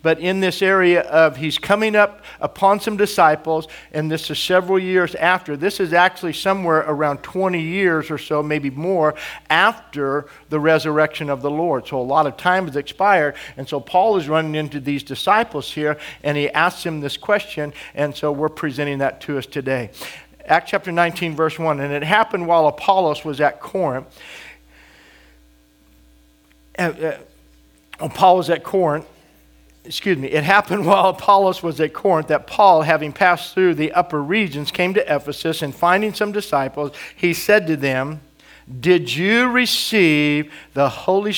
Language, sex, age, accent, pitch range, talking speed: English, male, 50-69, American, 145-185 Hz, 170 wpm